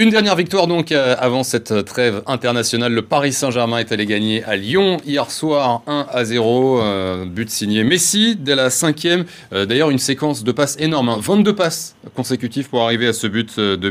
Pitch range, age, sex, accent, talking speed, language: 105-135 Hz, 30-49, male, French, 200 wpm, French